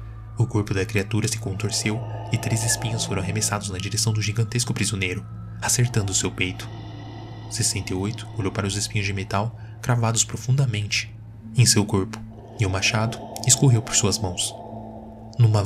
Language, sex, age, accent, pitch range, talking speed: Portuguese, male, 20-39, Brazilian, 100-115 Hz, 150 wpm